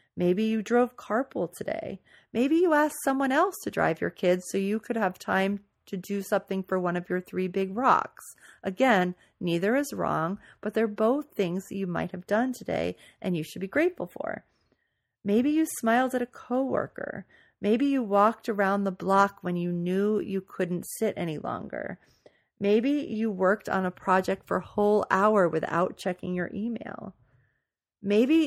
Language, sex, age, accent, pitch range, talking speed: English, female, 40-59, American, 185-235 Hz, 175 wpm